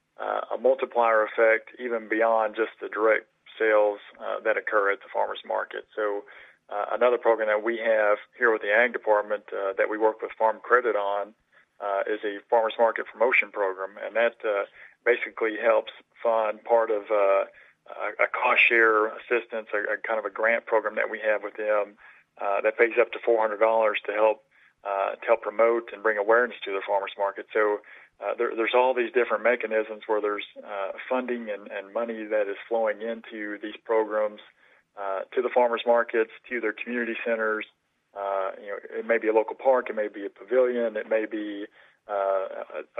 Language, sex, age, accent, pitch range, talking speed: English, male, 40-59, American, 105-115 Hz, 190 wpm